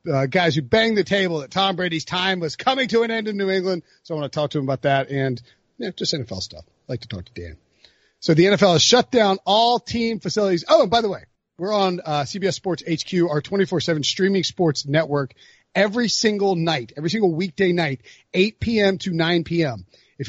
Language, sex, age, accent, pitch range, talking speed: English, male, 40-59, American, 155-205 Hz, 225 wpm